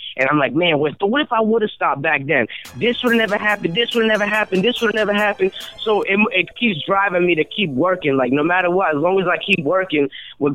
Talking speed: 275 wpm